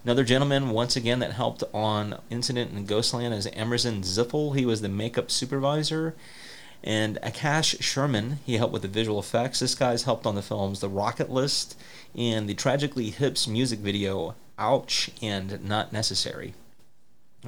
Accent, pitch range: American, 105-130 Hz